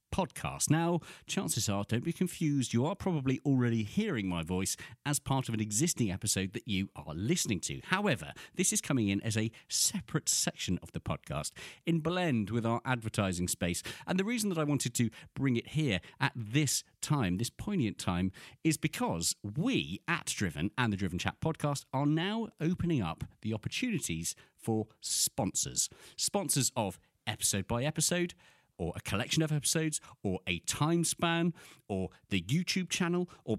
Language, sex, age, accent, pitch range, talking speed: English, male, 40-59, British, 105-160 Hz, 170 wpm